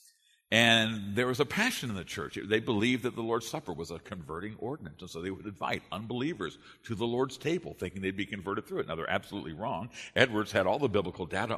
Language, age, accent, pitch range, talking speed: English, 50-69, American, 95-125 Hz, 230 wpm